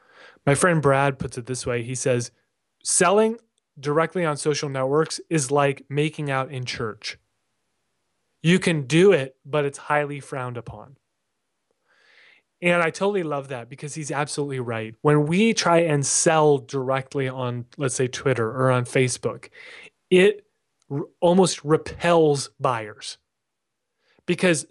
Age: 30-49